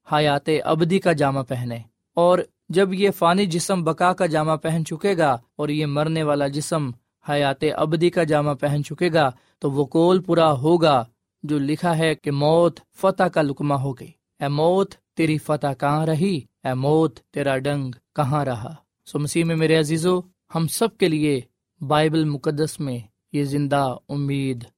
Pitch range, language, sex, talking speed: 140-175 Hz, Urdu, male, 165 wpm